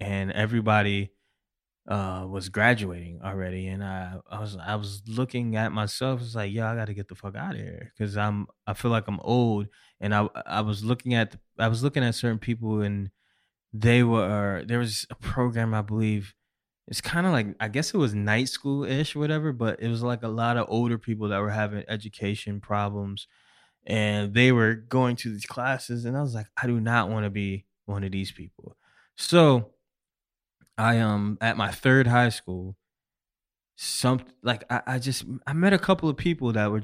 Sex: male